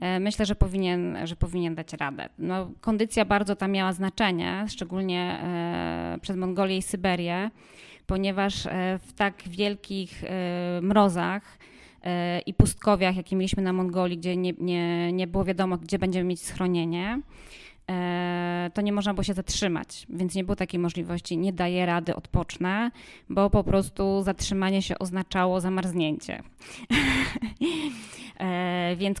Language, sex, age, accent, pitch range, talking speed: Polish, female, 20-39, native, 185-210 Hz, 125 wpm